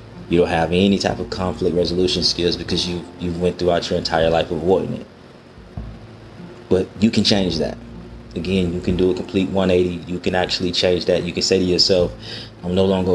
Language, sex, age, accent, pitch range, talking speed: English, male, 30-49, American, 85-95 Hz, 200 wpm